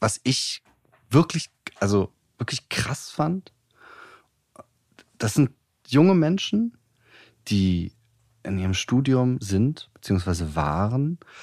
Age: 30-49